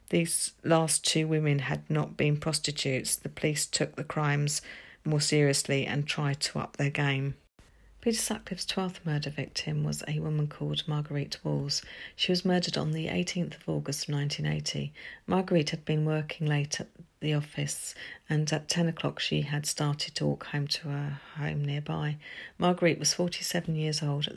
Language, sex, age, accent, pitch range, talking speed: English, female, 40-59, British, 145-160 Hz, 170 wpm